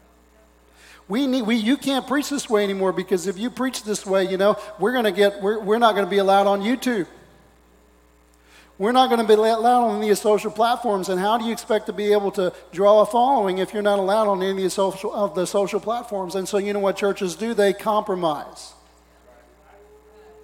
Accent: American